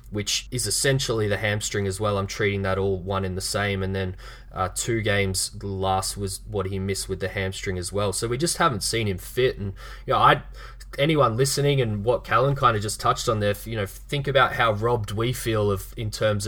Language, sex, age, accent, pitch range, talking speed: English, male, 20-39, Australian, 100-120 Hz, 230 wpm